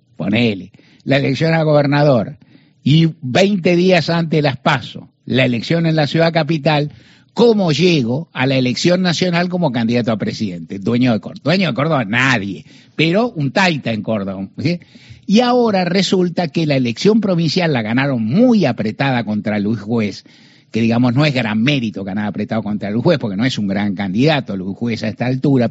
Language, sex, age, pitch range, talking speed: Spanish, male, 60-79, 125-180 Hz, 170 wpm